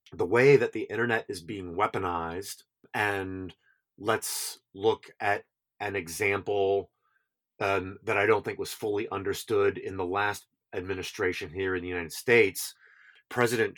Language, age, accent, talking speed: English, 30-49, American, 140 wpm